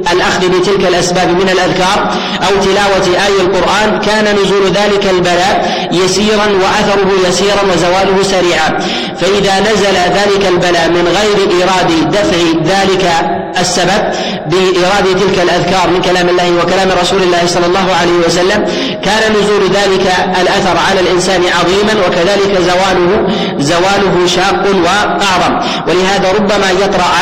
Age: 30-49